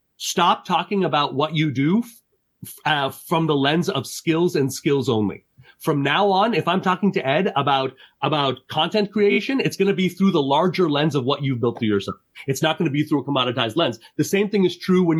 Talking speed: 225 wpm